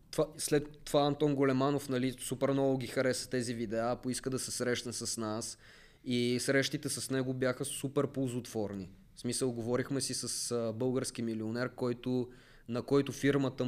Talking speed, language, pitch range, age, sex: 160 wpm, Bulgarian, 120-145 Hz, 20-39, male